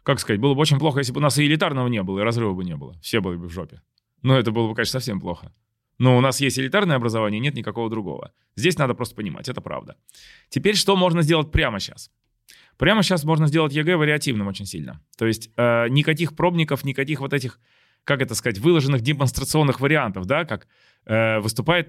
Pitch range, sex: 115-160 Hz, male